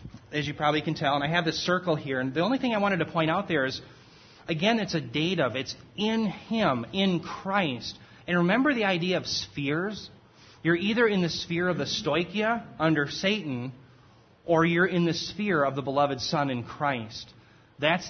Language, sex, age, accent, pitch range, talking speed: English, male, 30-49, American, 130-170 Hz, 200 wpm